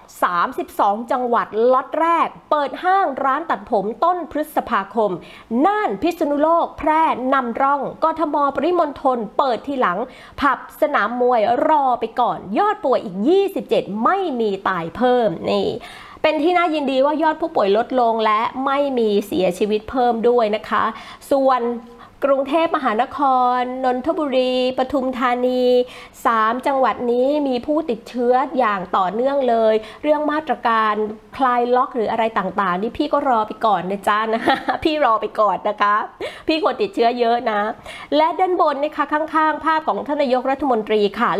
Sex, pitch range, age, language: female, 225-305 Hz, 30-49, Thai